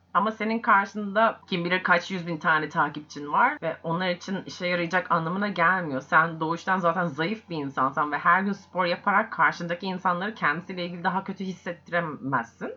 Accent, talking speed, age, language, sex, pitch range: native, 170 wpm, 30-49, Turkish, female, 175-260 Hz